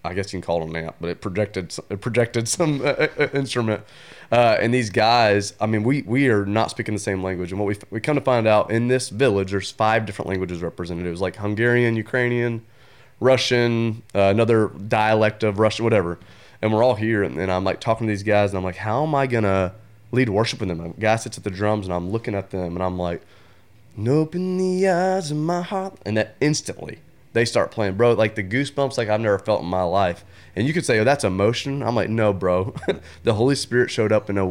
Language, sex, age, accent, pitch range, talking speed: English, male, 30-49, American, 100-125 Hz, 245 wpm